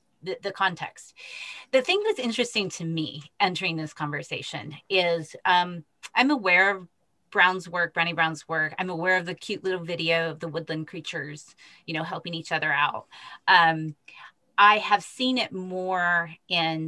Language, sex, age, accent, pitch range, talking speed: English, female, 30-49, American, 160-190 Hz, 165 wpm